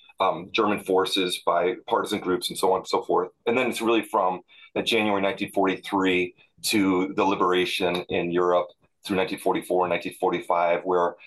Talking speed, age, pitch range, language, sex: 160 wpm, 30-49, 90-105 Hz, English, male